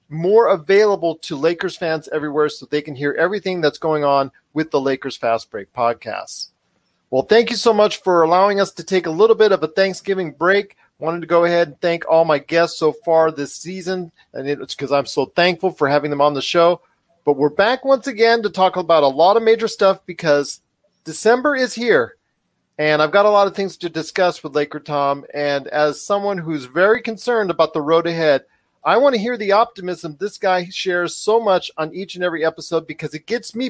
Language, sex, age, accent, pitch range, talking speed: English, male, 40-59, American, 155-210 Hz, 215 wpm